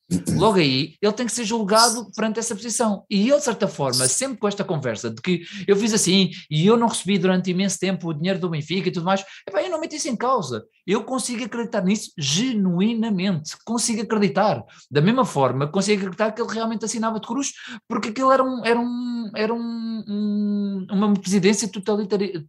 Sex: male